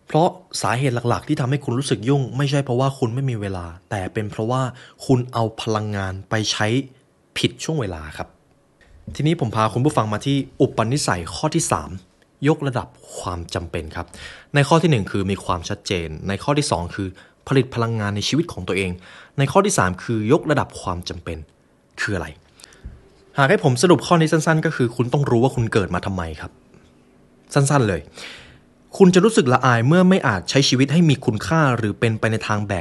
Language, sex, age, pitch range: Thai, male, 20-39, 95-140 Hz